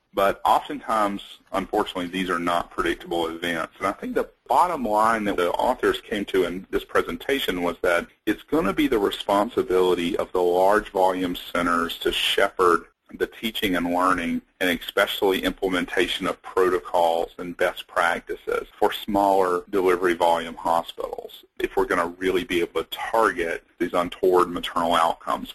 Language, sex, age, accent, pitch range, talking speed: English, male, 40-59, American, 90-115 Hz, 155 wpm